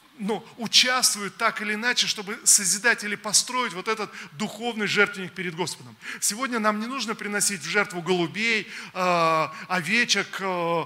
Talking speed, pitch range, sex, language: 135 wpm, 175-210 Hz, male, Russian